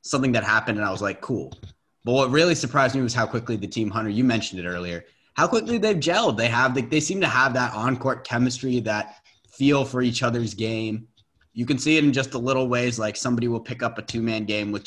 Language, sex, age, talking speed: English, male, 20-39, 245 wpm